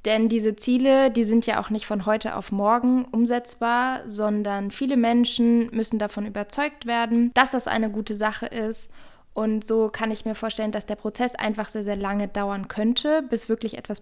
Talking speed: 190 wpm